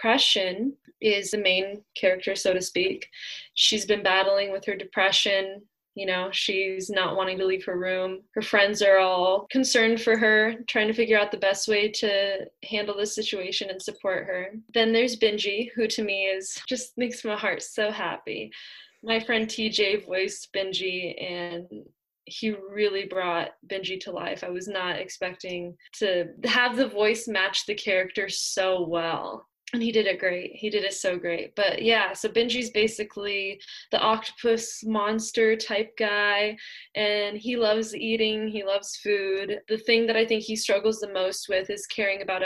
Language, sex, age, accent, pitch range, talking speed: English, female, 10-29, American, 190-220 Hz, 170 wpm